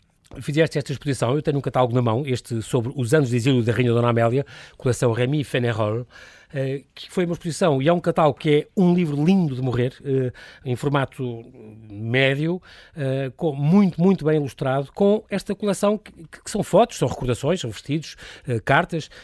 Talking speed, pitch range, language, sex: 170 wpm, 130-165 Hz, Portuguese, male